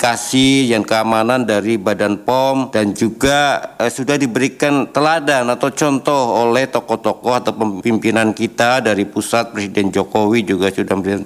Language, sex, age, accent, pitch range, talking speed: Indonesian, male, 50-69, native, 110-130 Hz, 135 wpm